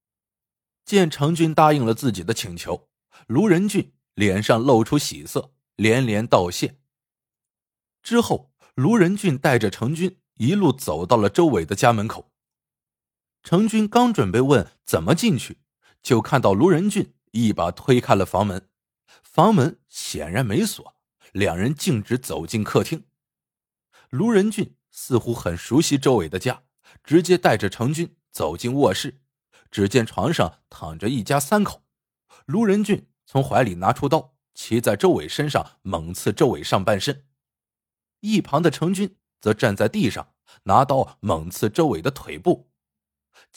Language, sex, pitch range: Chinese, male, 105-170 Hz